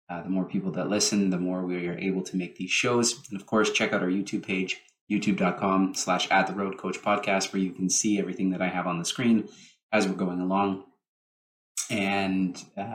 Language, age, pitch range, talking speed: English, 20-39, 95-105 Hz, 205 wpm